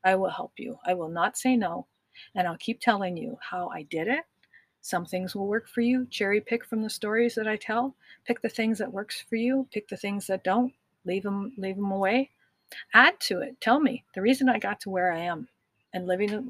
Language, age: English, 50-69